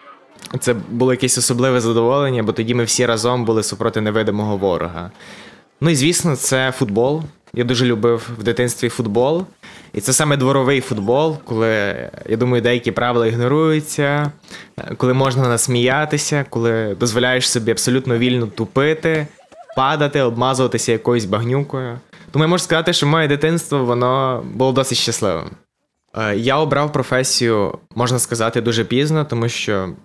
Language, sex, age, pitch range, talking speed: Ukrainian, male, 20-39, 110-135 Hz, 140 wpm